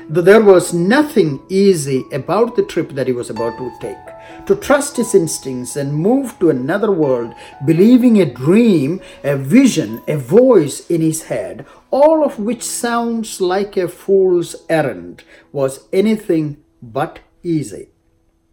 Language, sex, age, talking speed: English, male, 50-69, 145 wpm